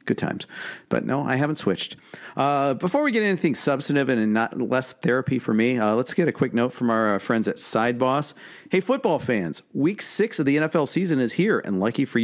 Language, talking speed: English, 215 wpm